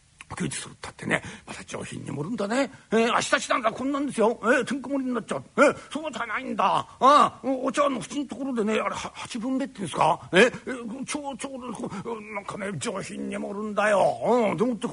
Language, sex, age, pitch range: Japanese, male, 60-79, 190-260 Hz